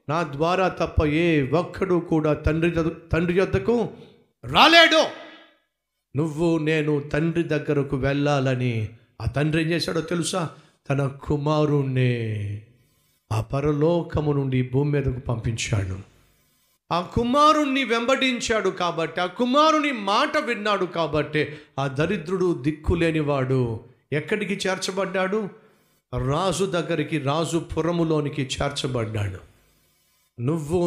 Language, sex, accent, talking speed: Telugu, male, native, 90 wpm